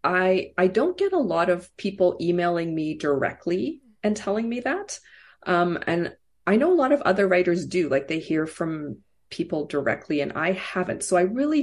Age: 40-59